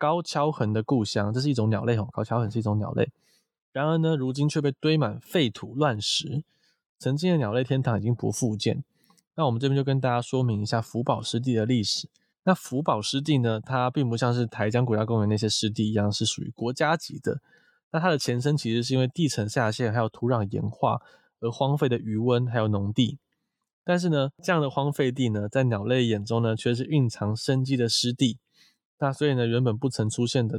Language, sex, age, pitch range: Chinese, male, 20-39, 115-145 Hz